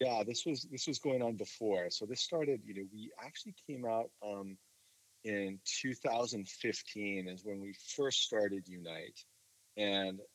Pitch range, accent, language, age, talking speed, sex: 95-115 Hz, American, English, 30-49, 155 wpm, male